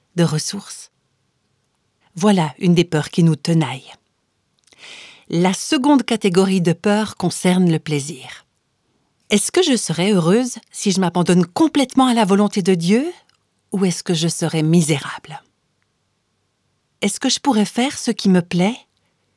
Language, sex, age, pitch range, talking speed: French, female, 60-79, 175-220 Hz, 145 wpm